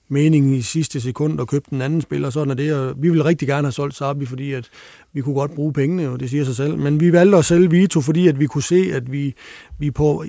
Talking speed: 280 wpm